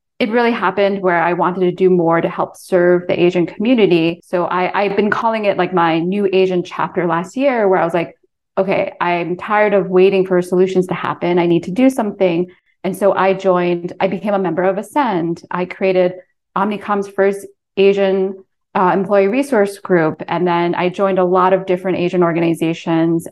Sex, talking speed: female, 195 wpm